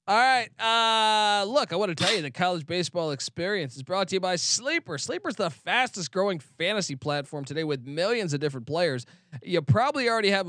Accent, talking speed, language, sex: American, 205 wpm, English, male